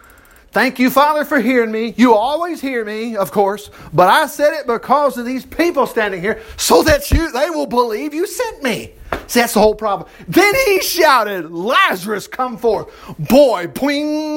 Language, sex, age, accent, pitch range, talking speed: English, male, 50-69, American, 150-245 Hz, 185 wpm